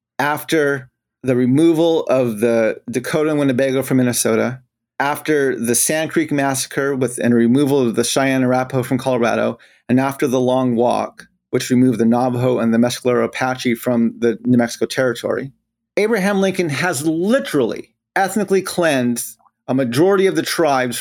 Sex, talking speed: male, 145 wpm